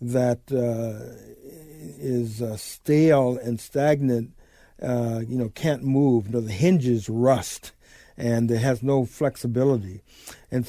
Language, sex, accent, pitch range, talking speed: English, male, American, 115-145 Hz, 135 wpm